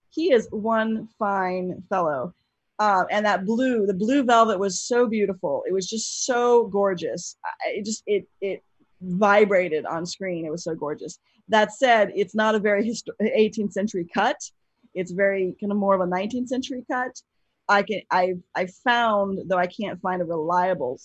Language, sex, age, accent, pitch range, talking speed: English, female, 40-59, American, 180-230 Hz, 175 wpm